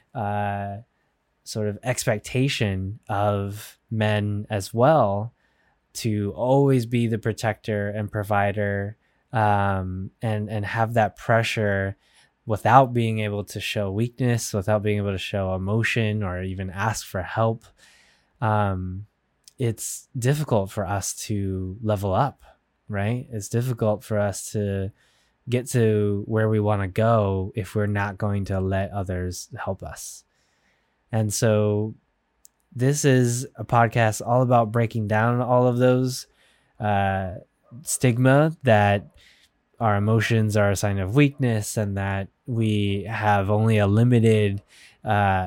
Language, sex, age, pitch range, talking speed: English, male, 10-29, 100-115 Hz, 130 wpm